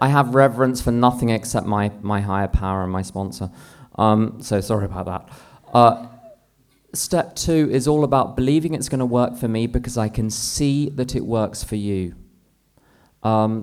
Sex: male